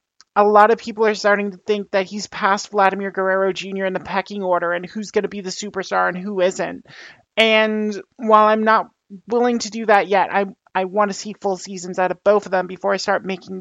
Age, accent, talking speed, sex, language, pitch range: 30-49, American, 235 wpm, male, English, 195-220 Hz